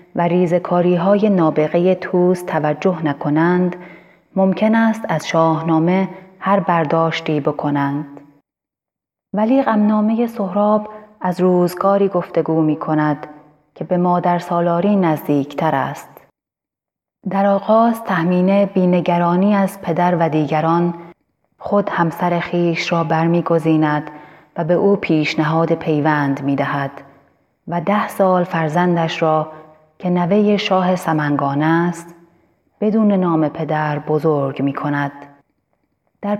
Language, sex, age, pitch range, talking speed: Persian, female, 30-49, 155-185 Hz, 105 wpm